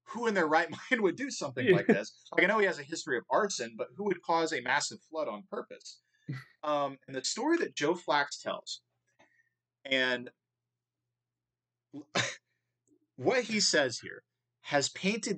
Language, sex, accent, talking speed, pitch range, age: English, male, American, 165 wpm, 115-150 Hz, 20-39